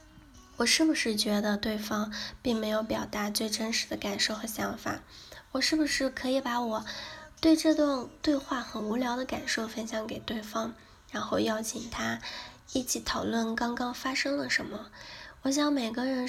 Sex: female